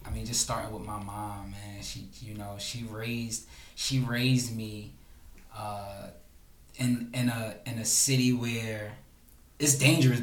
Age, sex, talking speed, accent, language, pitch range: 20-39, male, 155 wpm, American, English, 115-140 Hz